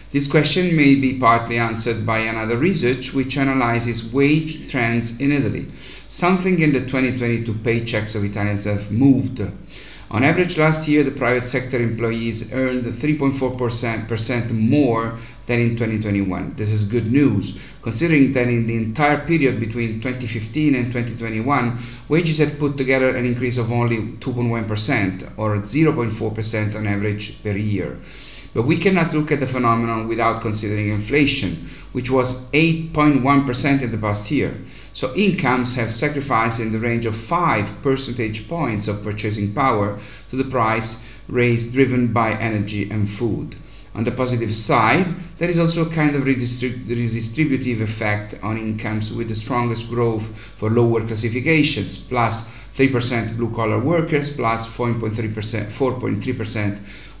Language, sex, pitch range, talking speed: English, male, 110-135 Hz, 140 wpm